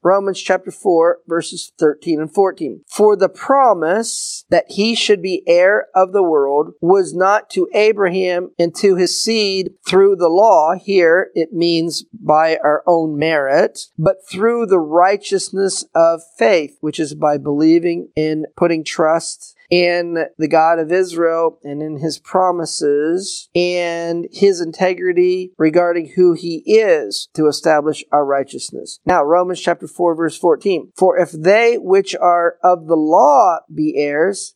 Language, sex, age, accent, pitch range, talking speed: English, male, 40-59, American, 160-195 Hz, 150 wpm